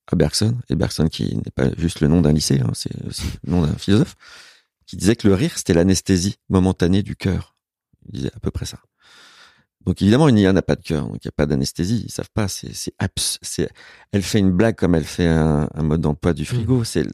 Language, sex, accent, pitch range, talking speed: French, male, French, 90-115 Hz, 250 wpm